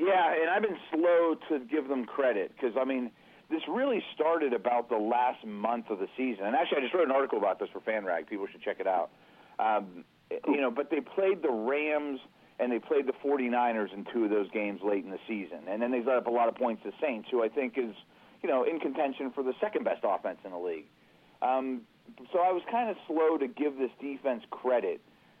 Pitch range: 110-145 Hz